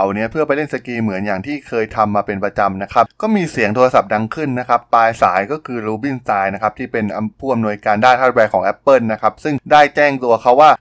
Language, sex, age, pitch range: Thai, male, 20-39, 105-140 Hz